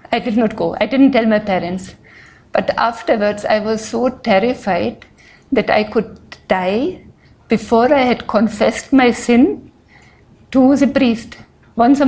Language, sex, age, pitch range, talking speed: English, female, 60-79, 220-275 Hz, 145 wpm